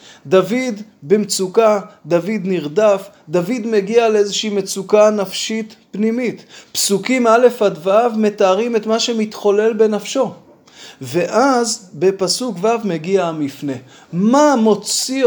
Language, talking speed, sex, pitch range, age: Hebrew, 100 wpm, male, 190-235 Hz, 20-39